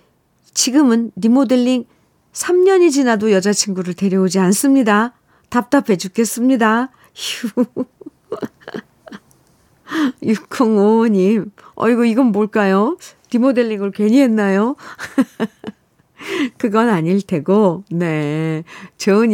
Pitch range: 175-250 Hz